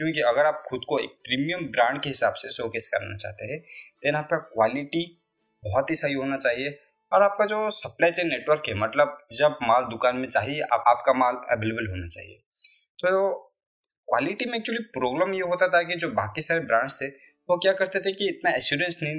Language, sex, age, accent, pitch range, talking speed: Hindi, male, 20-39, native, 130-170 Hz, 205 wpm